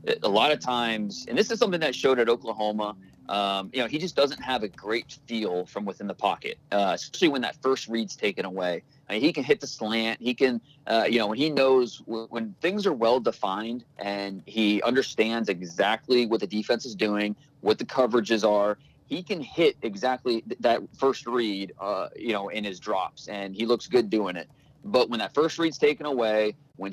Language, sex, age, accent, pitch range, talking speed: English, male, 30-49, American, 110-140 Hz, 215 wpm